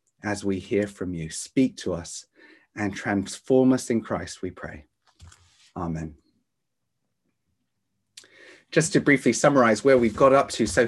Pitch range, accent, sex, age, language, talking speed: 105-150 Hz, British, male, 30-49, English, 145 wpm